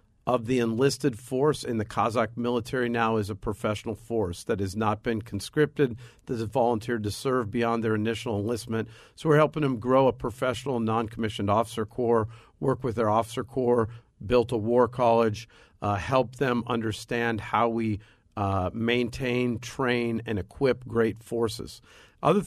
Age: 50-69